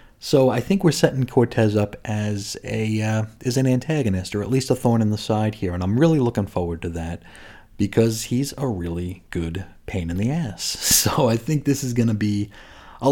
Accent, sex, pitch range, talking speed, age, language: American, male, 100-120 Hz, 215 wpm, 30-49, English